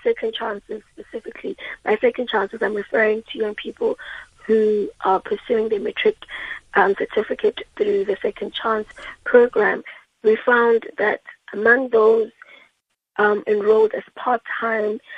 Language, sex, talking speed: English, female, 125 wpm